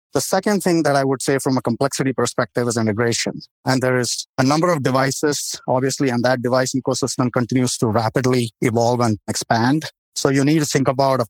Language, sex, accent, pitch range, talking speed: English, male, Indian, 120-135 Hz, 200 wpm